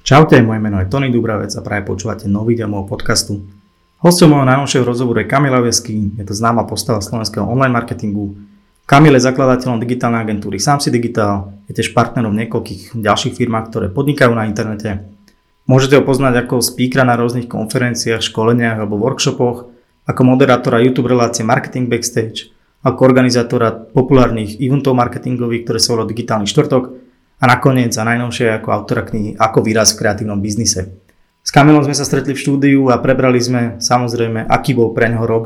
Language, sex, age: Slovak, male, 20-39